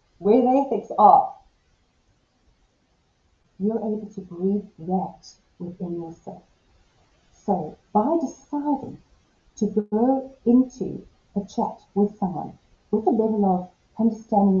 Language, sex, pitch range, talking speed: English, female, 205-255 Hz, 105 wpm